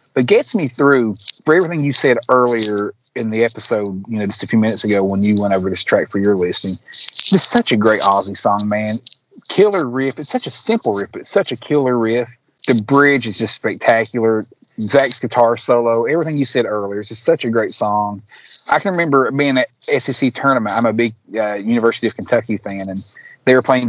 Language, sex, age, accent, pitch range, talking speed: English, male, 30-49, American, 110-140 Hz, 215 wpm